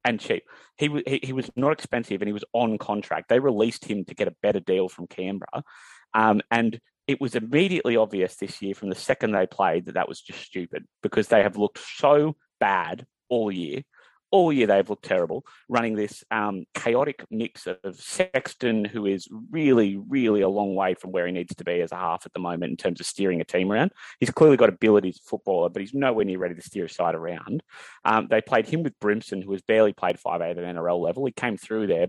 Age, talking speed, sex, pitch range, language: 30-49, 225 wpm, male, 105-140 Hz, English